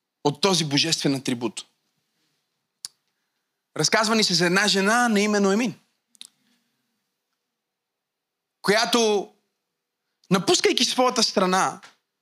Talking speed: 85 wpm